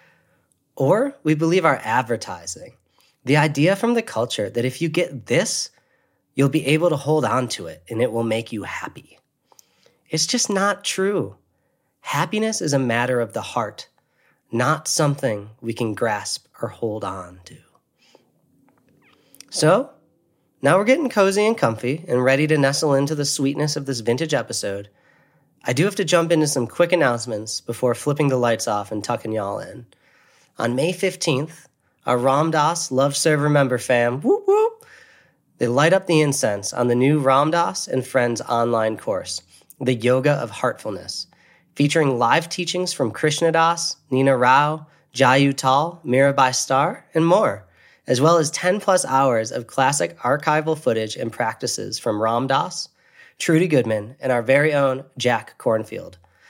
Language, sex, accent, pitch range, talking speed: English, male, American, 120-160 Hz, 160 wpm